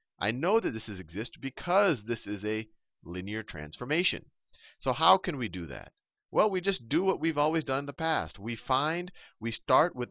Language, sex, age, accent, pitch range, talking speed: English, male, 40-59, American, 95-135 Hz, 195 wpm